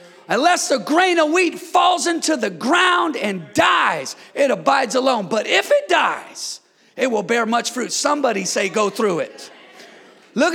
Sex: male